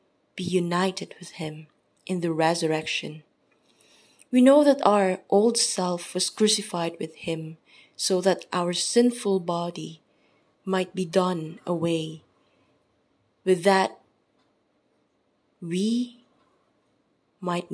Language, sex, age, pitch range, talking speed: English, female, 20-39, 165-205 Hz, 100 wpm